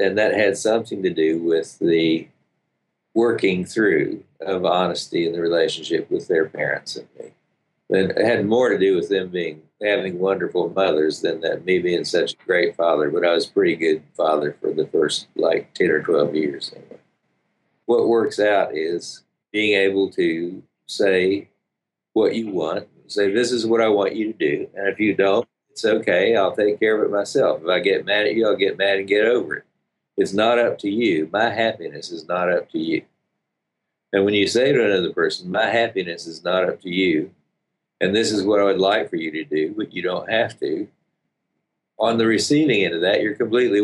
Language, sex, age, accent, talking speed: English, male, 50-69, American, 205 wpm